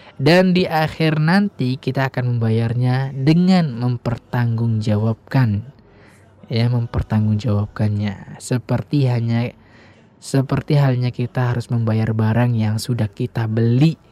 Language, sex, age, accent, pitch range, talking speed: Indonesian, male, 20-39, native, 110-130 Hz, 100 wpm